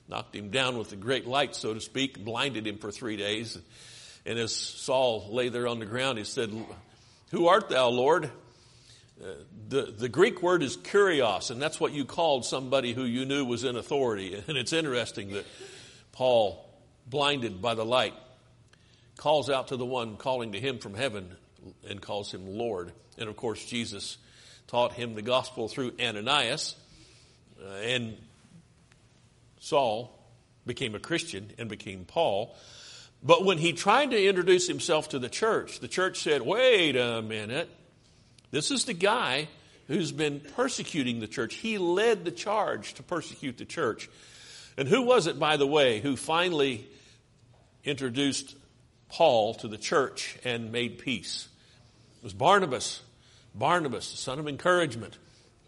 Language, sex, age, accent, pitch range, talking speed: English, male, 50-69, American, 115-150 Hz, 160 wpm